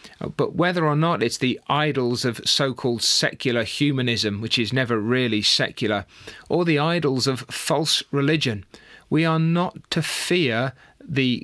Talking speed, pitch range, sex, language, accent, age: 145 wpm, 115-150 Hz, male, English, British, 40-59